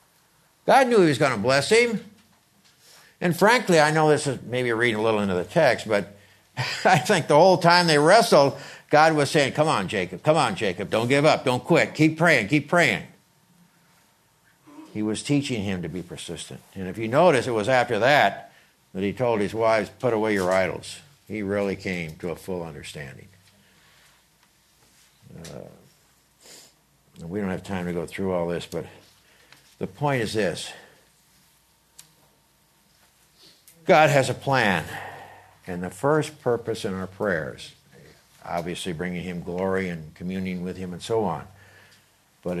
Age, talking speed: 60-79, 165 wpm